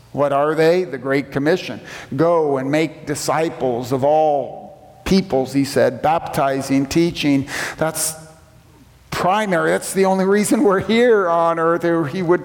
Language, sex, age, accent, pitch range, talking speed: English, male, 50-69, American, 130-155 Hz, 140 wpm